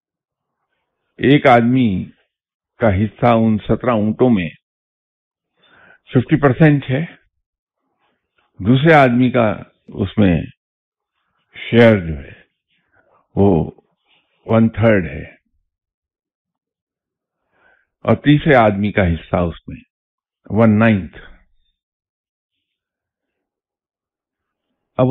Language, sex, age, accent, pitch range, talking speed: English, male, 50-69, Indian, 95-120 Hz, 75 wpm